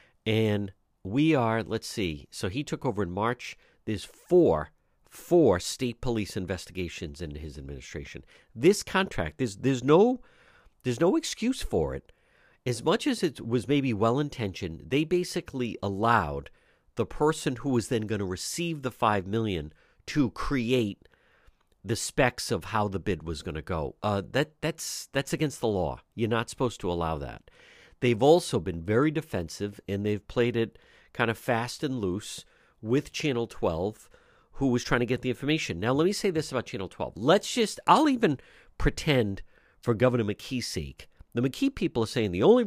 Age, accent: 50-69, American